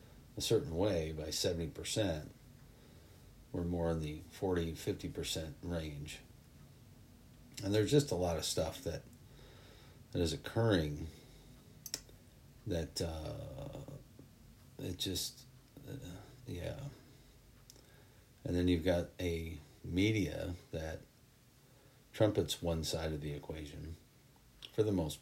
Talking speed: 110 wpm